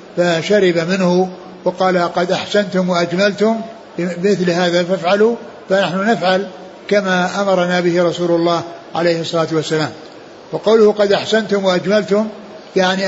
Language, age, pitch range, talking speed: Arabic, 60-79, 170-195 Hz, 110 wpm